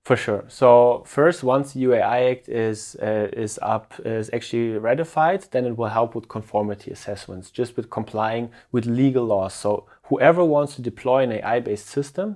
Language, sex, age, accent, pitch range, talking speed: English, male, 30-49, German, 110-125 Hz, 175 wpm